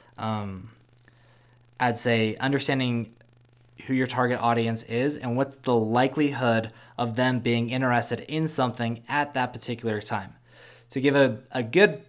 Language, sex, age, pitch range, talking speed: English, male, 20-39, 115-130 Hz, 140 wpm